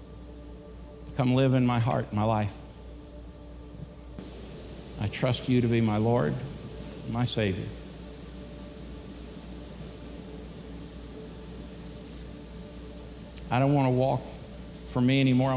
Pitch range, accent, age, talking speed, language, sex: 115-145 Hz, American, 50-69, 95 wpm, English, male